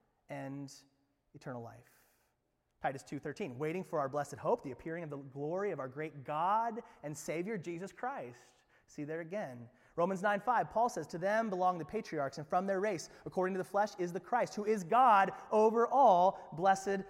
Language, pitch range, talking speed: English, 150-225 Hz, 185 wpm